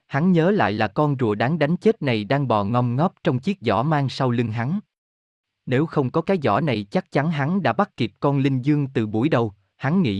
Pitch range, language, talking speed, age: 115-160 Hz, Vietnamese, 240 wpm, 20-39